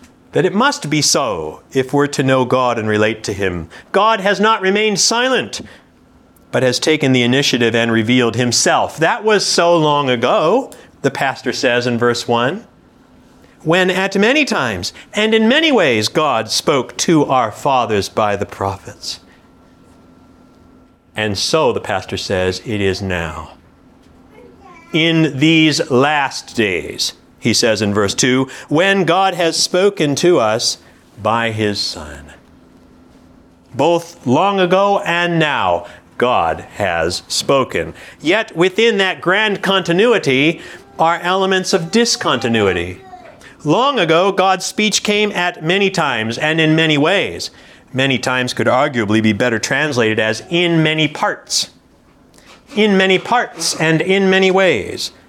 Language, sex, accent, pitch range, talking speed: English, male, American, 115-190 Hz, 140 wpm